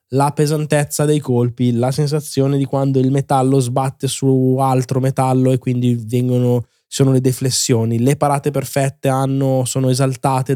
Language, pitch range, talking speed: Italian, 120-135 Hz, 140 wpm